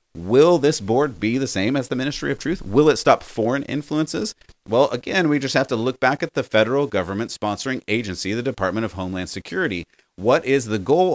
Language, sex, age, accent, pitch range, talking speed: English, male, 30-49, American, 100-140 Hz, 210 wpm